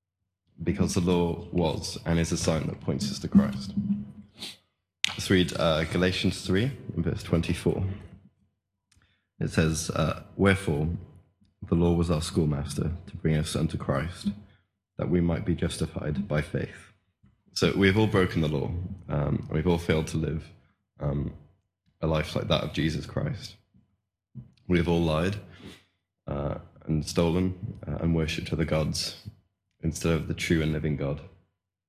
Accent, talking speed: British, 150 wpm